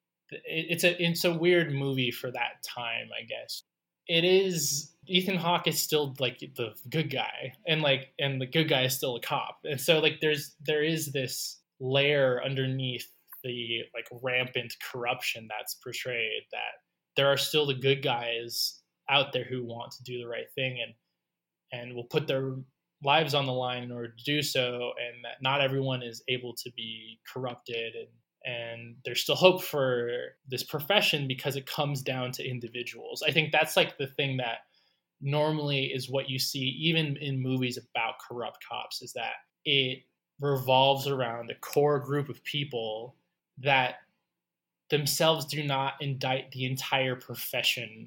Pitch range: 125-150 Hz